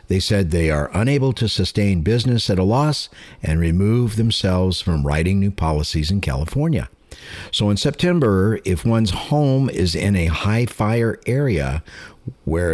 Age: 50-69